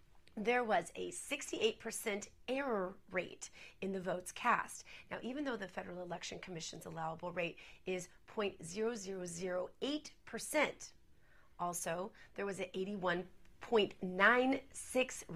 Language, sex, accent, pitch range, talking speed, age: English, female, American, 185-270 Hz, 100 wpm, 30-49